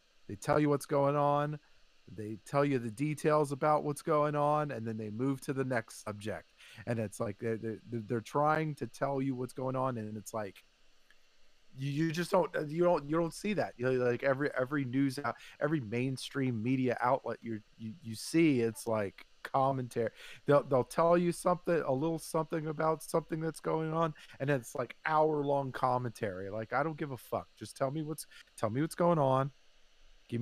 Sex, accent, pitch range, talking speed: male, American, 115-160 Hz, 200 wpm